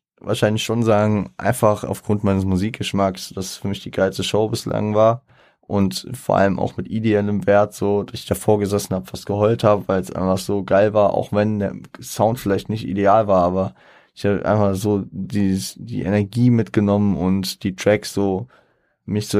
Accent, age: German, 20-39